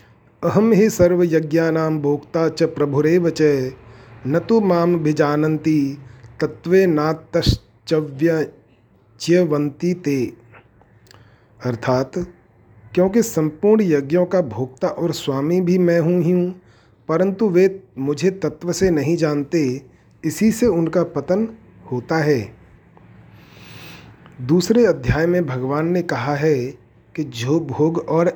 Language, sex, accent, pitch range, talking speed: Hindi, male, native, 130-175 Hz, 105 wpm